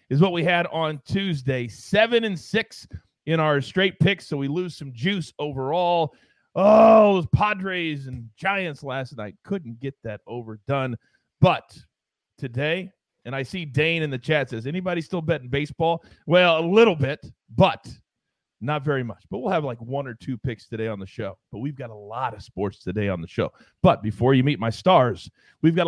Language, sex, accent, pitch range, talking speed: English, male, American, 130-180 Hz, 195 wpm